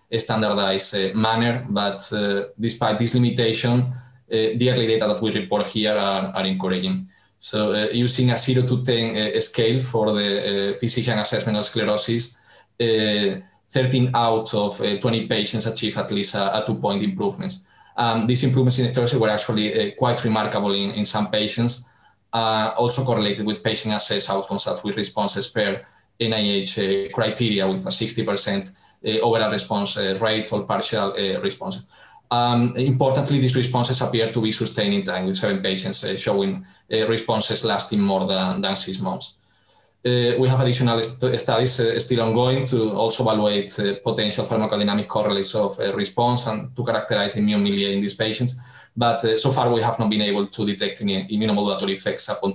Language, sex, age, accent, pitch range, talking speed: English, male, 20-39, Spanish, 105-120 Hz, 180 wpm